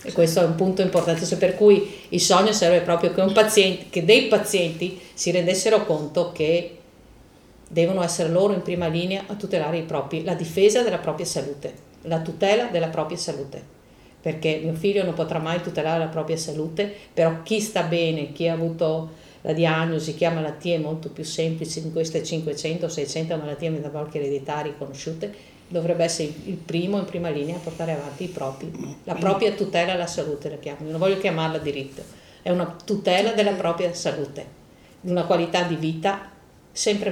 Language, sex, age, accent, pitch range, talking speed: Italian, female, 50-69, native, 155-190 Hz, 175 wpm